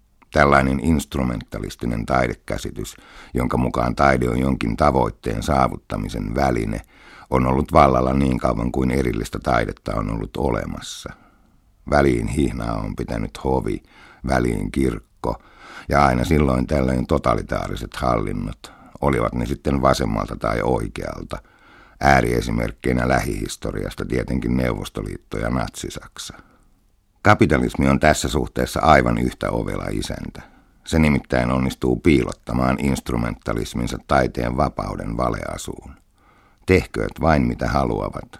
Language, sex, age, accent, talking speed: Finnish, male, 60-79, native, 105 wpm